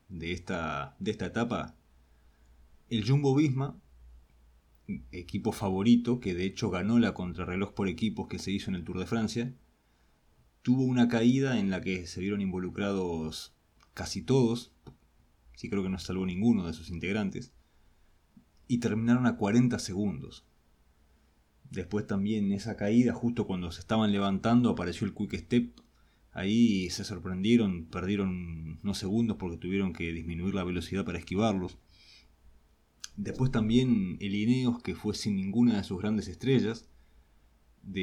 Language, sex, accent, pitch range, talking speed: Spanish, male, Argentinian, 80-115 Hz, 145 wpm